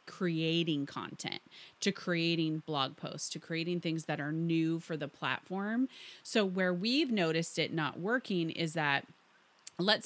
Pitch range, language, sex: 160-205 Hz, English, female